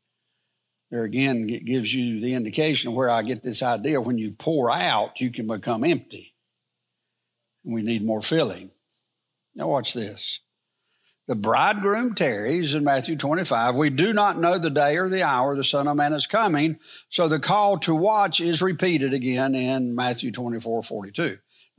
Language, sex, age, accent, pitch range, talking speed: English, male, 60-79, American, 125-170 Hz, 170 wpm